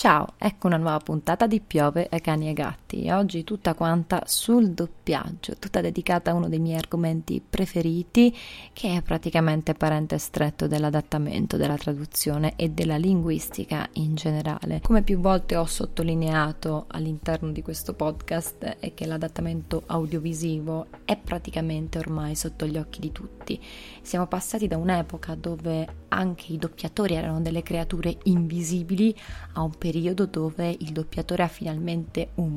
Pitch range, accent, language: 160-185 Hz, native, Italian